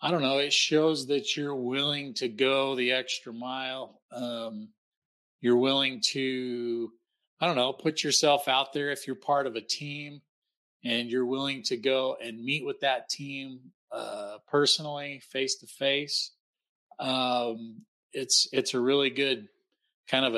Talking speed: 155 wpm